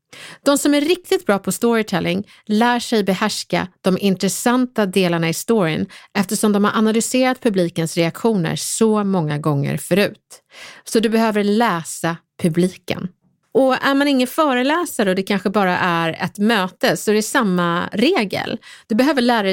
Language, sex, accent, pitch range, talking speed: English, female, Swedish, 175-245 Hz, 155 wpm